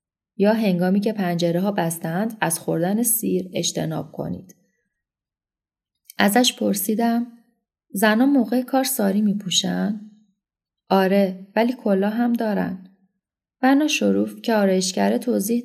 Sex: female